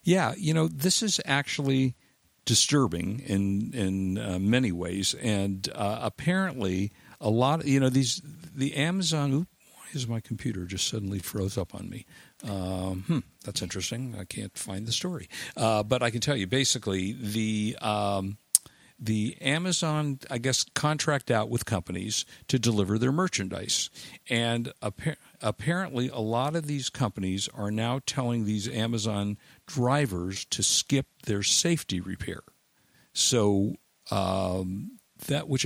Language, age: English, 50-69